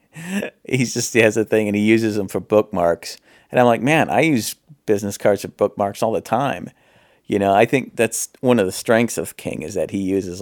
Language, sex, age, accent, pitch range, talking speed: English, male, 40-59, American, 95-115 Hz, 230 wpm